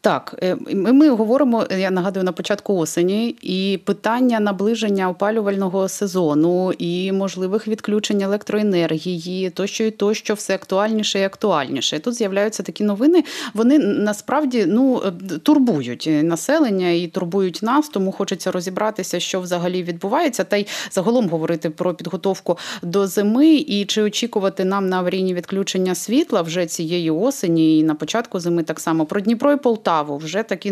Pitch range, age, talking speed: 165-205 Hz, 30-49, 145 wpm